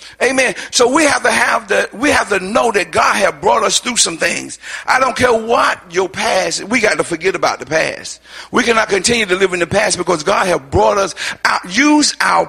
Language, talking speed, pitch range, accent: English, 230 wpm, 210-270 Hz, American